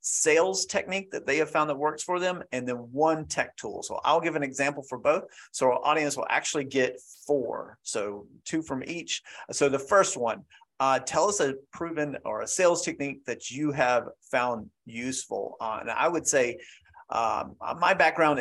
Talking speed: 190 wpm